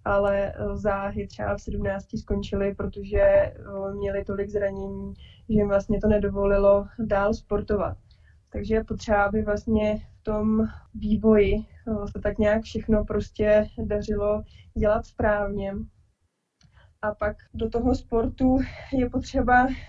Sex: female